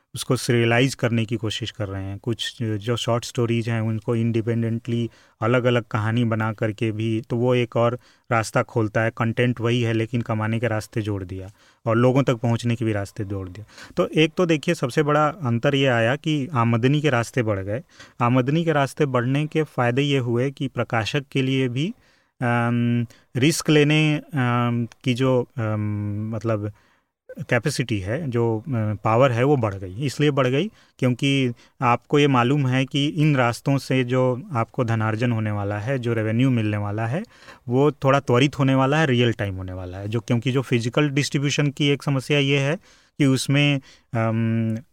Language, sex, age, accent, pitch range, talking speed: Hindi, male, 30-49, native, 115-140 Hz, 180 wpm